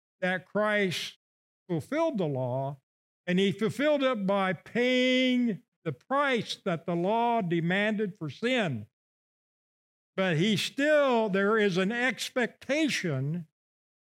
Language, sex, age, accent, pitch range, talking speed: English, male, 60-79, American, 165-235 Hz, 110 wpm